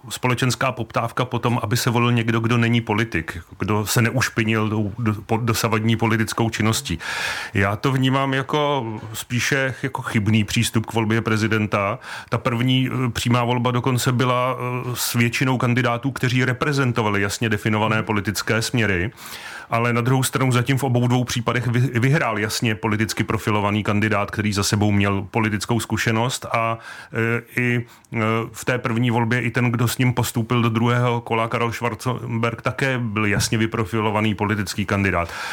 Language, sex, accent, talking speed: Czech, male, native, 155 wpm